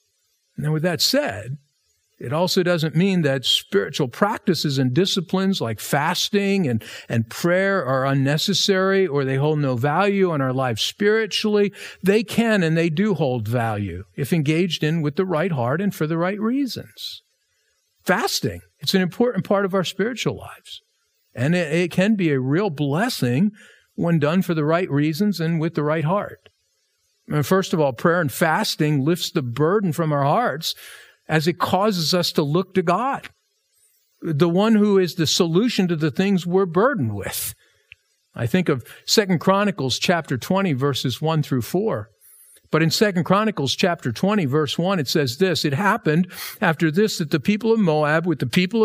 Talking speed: 175 wpm